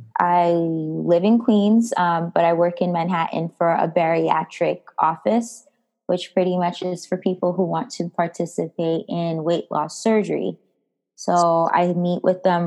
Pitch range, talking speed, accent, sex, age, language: 165-190 Hz, 155 wpm, American, female, 20-39, English